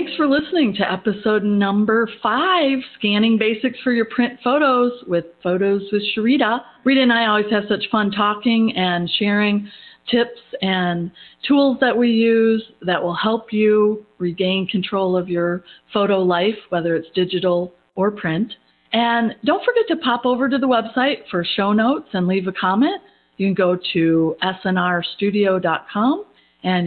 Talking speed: 155 wpm